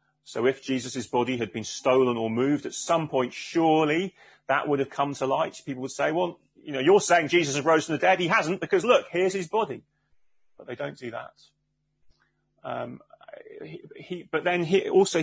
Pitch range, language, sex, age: 130-170 Hz, English, male, 30-49